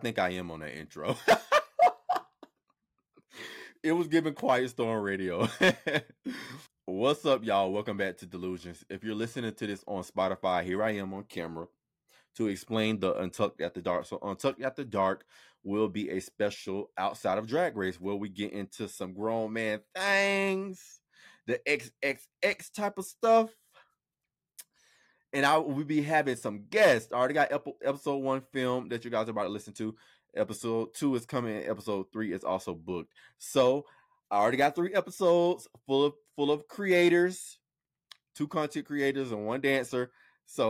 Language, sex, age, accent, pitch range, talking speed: English, male, 20-39, American, 105-165 Hz, 165 wpm